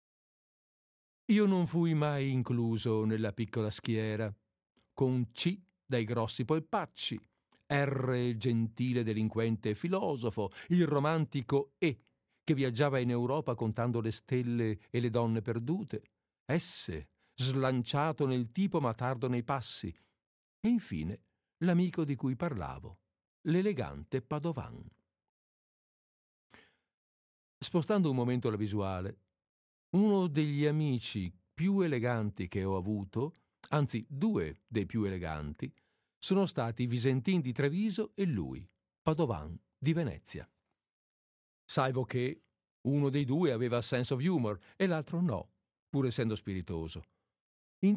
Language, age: Italian, 50-69